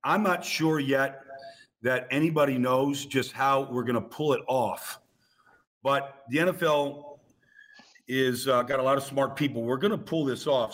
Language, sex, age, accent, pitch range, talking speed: English, male, 50-69, American, 135-185 Hz, 180 wpm